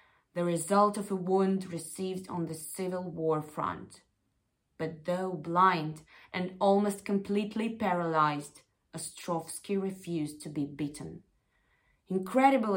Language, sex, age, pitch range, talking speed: Russian, female, 20-39, 155-200 Hz, 115 wpm